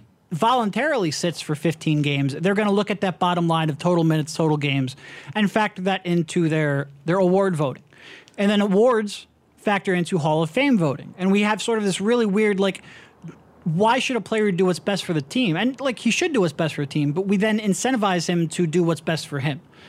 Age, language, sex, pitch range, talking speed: 30-49, English, male, 160-205 Hz, 225 wpm